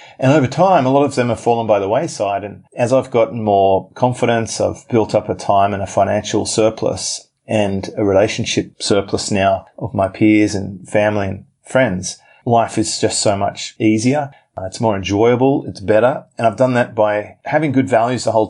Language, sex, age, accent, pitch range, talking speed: English, male, 30-49, Australian, 105-120 Hz, 200 wpm